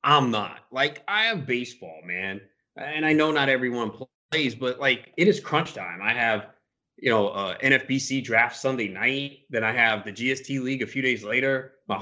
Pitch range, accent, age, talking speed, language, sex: 115-155 Hz, American, 30-49, 195 wpm, English, male